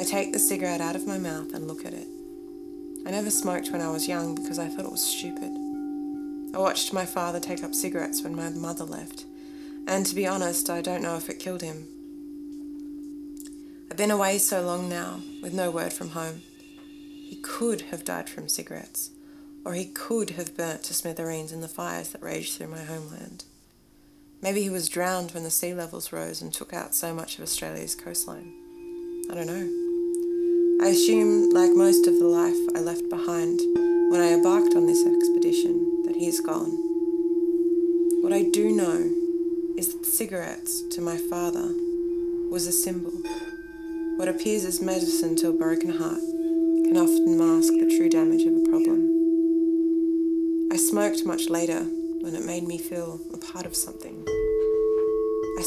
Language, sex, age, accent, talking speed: English, female, 20-39, Australian, 175 wpm